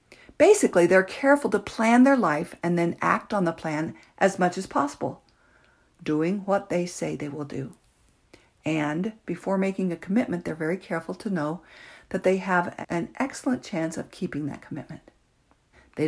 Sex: female